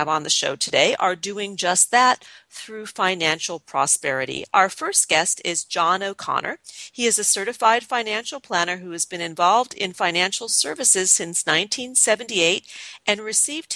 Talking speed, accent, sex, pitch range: 150 wpm, American, female, 175-250 Hz